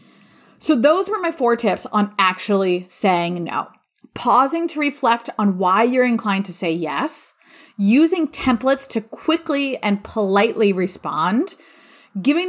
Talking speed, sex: 135 wpm, female